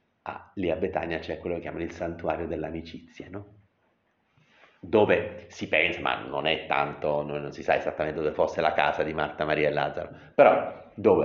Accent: native